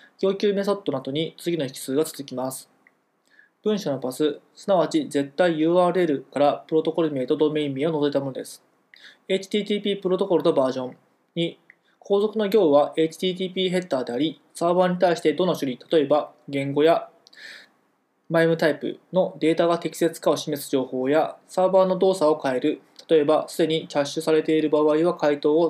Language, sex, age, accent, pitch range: Japanese, male, 20-39, native, 150-180 Hz